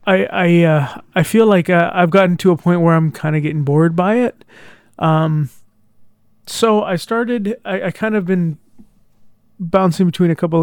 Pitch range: 155-190 Hz